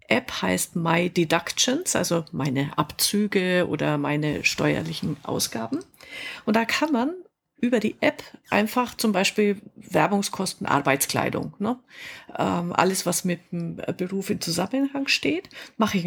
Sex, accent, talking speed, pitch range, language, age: female, German, 125 wpm, 170-225 Hz, German, 50-69